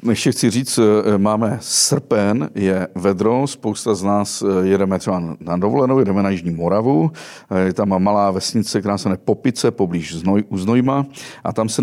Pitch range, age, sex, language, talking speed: 95-125 Hz, 40-59, male, Czech, 160 wpm